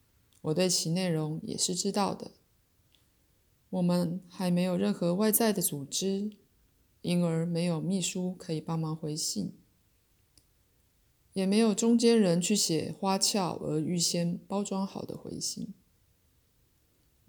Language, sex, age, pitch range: Chinese, female, 20-39, 160-190 Hz